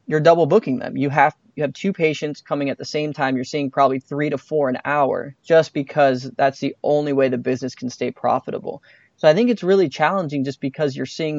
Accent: American